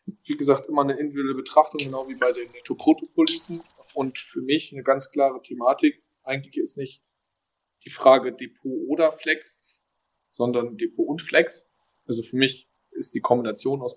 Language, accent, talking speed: German, German, 165 wpm